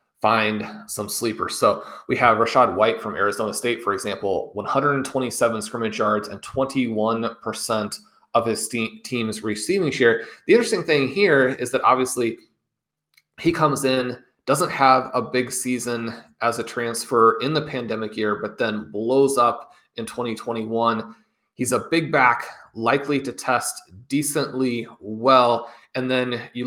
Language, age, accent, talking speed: English, 30-49, American, 145 wpm